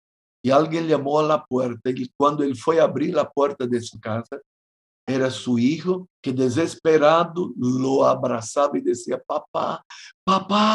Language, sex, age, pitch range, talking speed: Spanish, male, 60-79, 120-185 Hz, 155 wpm